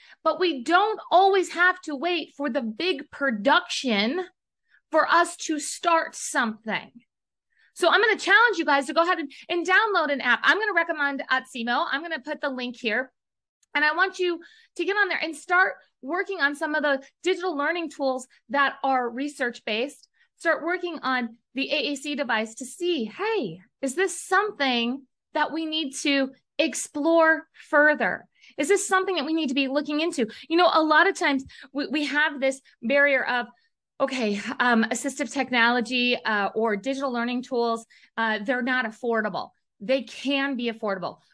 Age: 30-49